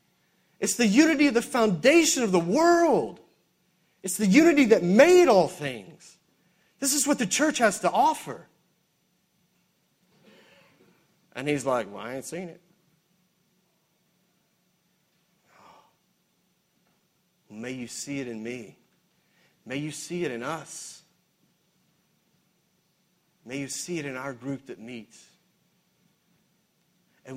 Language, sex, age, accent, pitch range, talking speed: English, male, 40-59, American, 140-185 Hz, 120 wpm